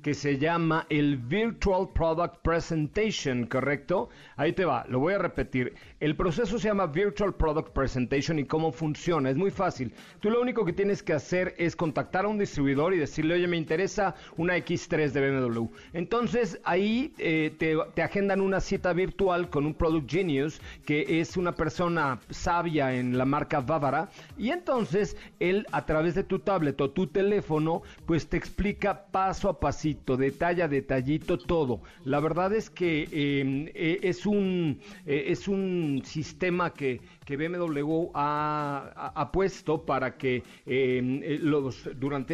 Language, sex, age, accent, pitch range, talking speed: Spanish, male, 40-59, Mexican, 145-185 Hz, 160 wpm